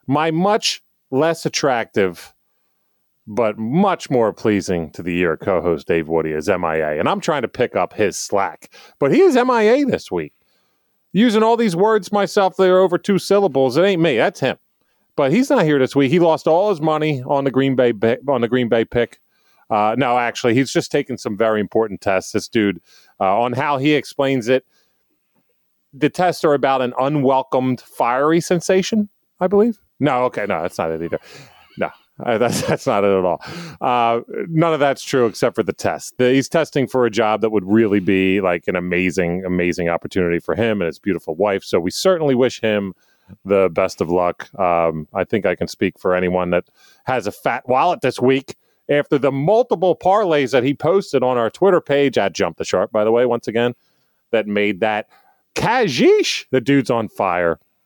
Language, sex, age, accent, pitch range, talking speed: English, male, 40-59, American, 105-170 Hz, 195 wpm